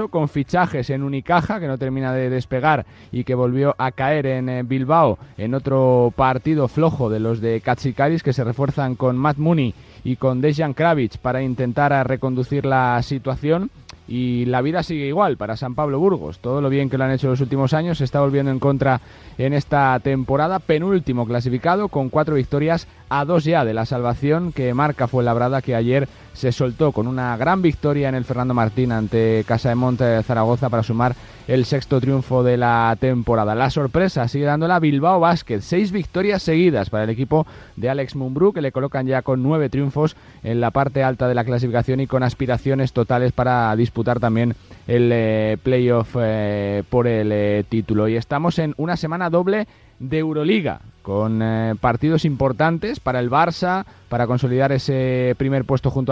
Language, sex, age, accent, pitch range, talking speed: Spanish, male, 30-49, Spanish, 120-145 Hz, 180 wpm